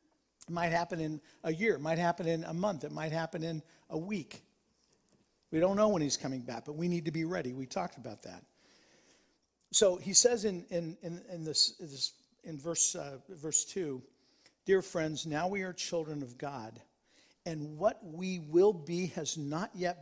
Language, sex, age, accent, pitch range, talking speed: English, male, 50-69, American, 160-215 Hz, 190 wpm